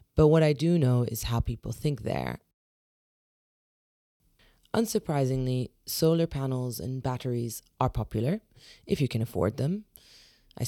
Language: English